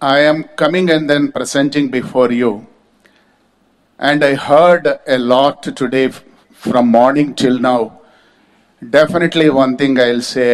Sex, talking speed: male, 130 wpm